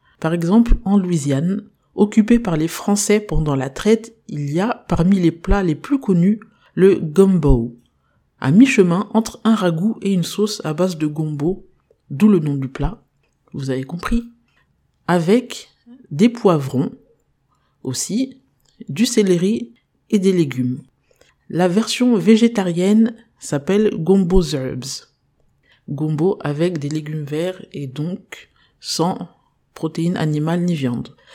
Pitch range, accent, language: 155-215 Hz, French, French